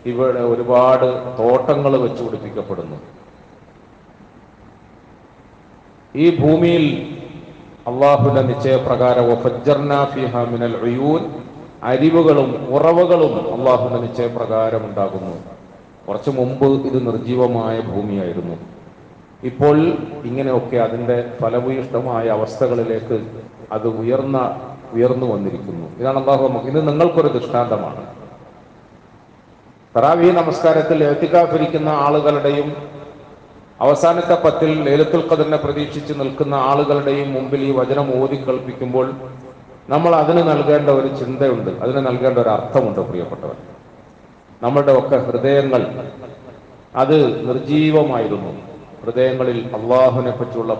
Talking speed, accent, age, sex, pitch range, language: 80 wpm, native, 40-59, male, 120-150 Hz, Malayalam